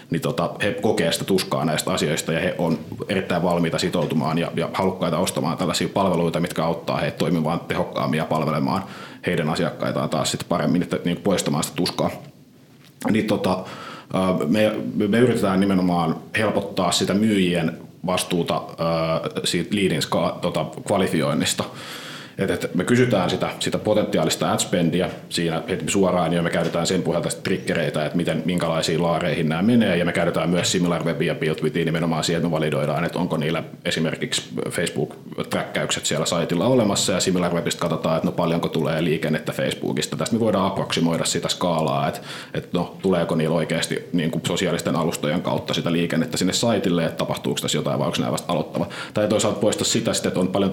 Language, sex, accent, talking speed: Finnish, male, native, 160 wpm